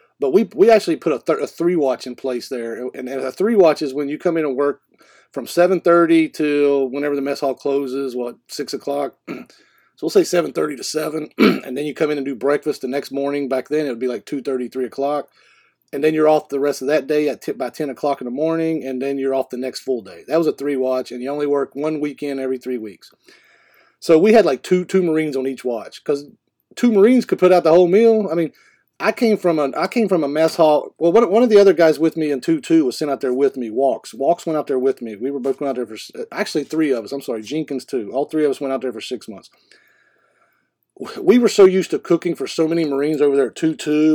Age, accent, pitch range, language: 40-59, American, 130-165 Hz, English